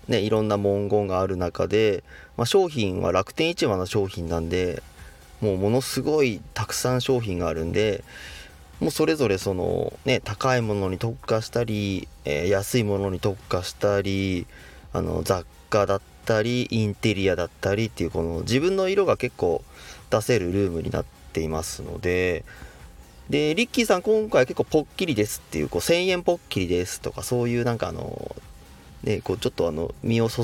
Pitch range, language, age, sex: 90-130 Hz, Japanese, 30-49, male